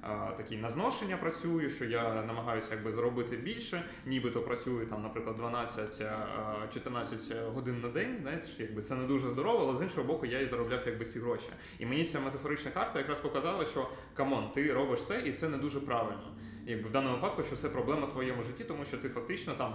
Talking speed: 195 wpm